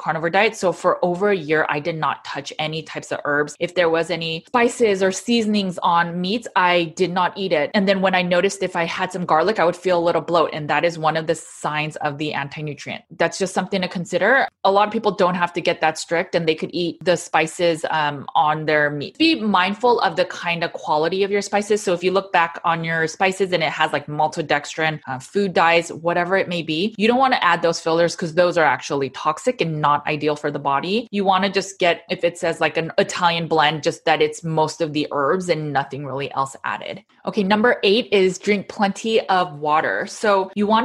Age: 20-39